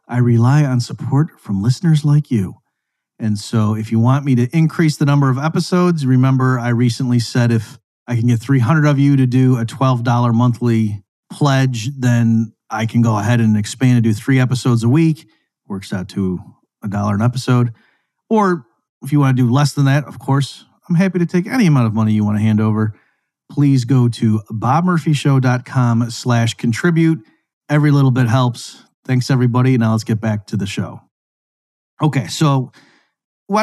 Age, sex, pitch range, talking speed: 40-59, male, 115-140 Hz, 180 wpm